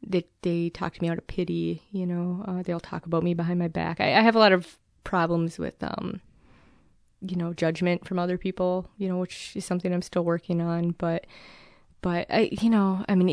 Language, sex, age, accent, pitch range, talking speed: English, female, 20-39, American, 175-200 Hz, 220 wpm